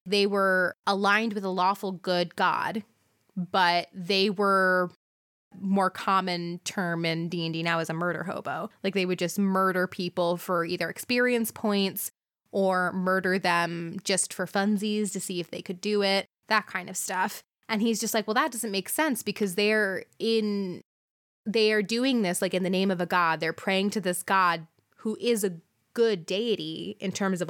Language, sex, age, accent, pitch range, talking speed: English, female, 20-39, American, 180-210 Hz, 185 wpm